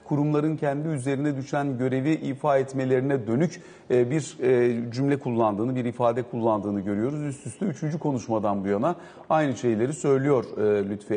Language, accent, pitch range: Turkish, native, 115-140 Hz